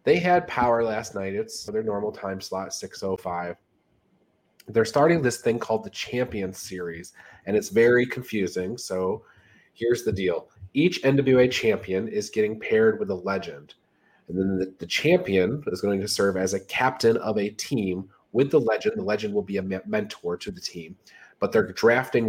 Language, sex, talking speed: English, male, 180 wpm